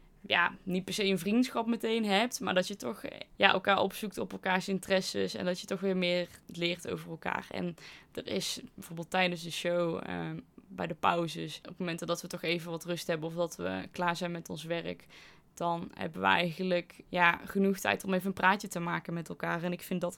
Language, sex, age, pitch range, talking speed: Dutch, female, 20-39, 165-185 Hz, 215 wpm